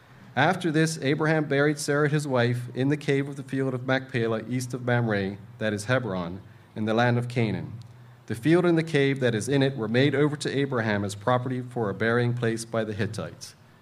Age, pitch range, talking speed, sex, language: 40-59, 105-120 Hz, 215 wpm, male, English